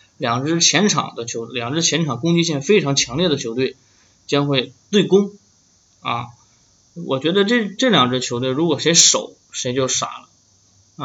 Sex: male